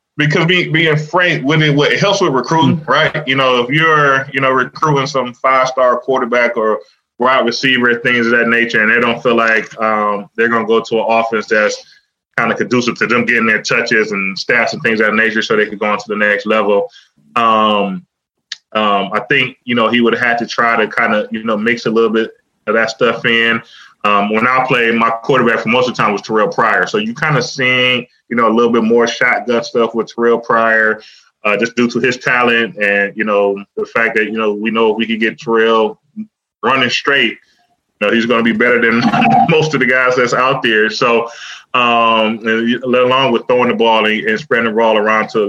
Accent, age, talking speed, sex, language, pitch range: American, 20-39, 225 wpm, male, English, 115-145 Hz